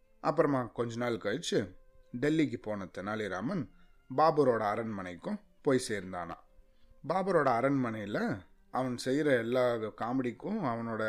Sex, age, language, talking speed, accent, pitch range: male, 30-49, Tamil, 95 wpm, native, 110-140 Hz